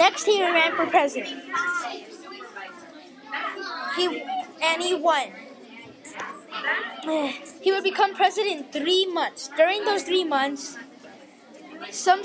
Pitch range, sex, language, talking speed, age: 290-355 Hz, female, English, 105 wpm, 20-39